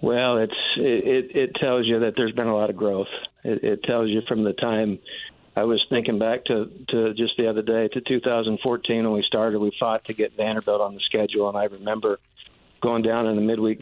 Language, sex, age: English, male, 50-69